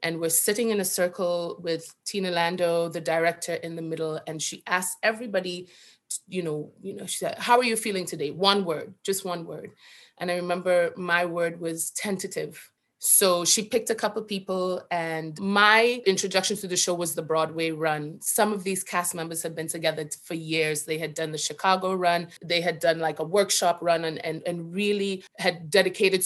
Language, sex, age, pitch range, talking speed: English, female, 30-49, 160-185 Hz, 200 wpm